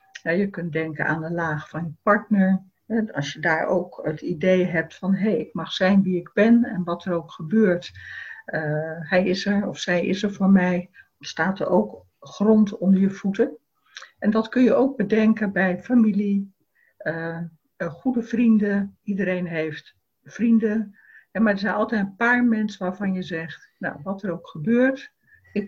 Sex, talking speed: female, 180 wpm